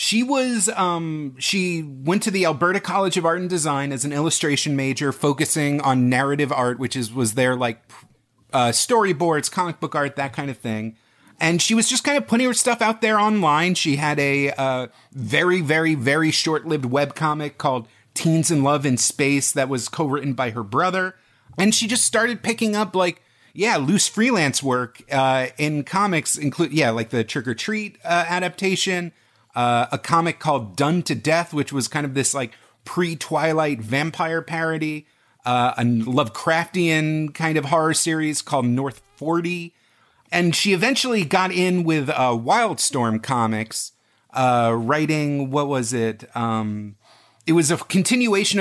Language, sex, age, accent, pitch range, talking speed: English, male, 30-49, American, 130-175 Hz, 170 wpm